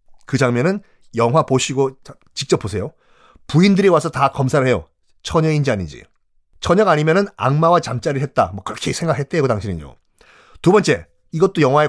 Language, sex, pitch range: Korean, male, 125-175 Hz